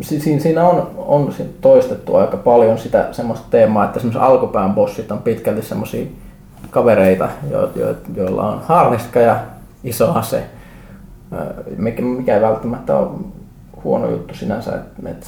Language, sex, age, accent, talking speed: Finnish, male, 20-39, native, 125 wpm